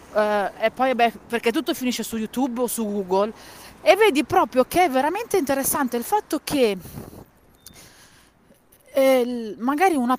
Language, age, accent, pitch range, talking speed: Italian, 40-59, native, 215-280 Hz, 135 wpm